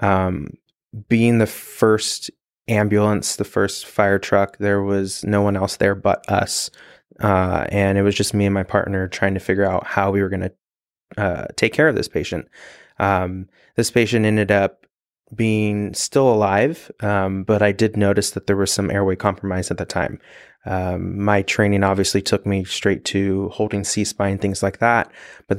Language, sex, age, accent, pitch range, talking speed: English, male, 20-39, American, 95-105 Hz, 180 wpm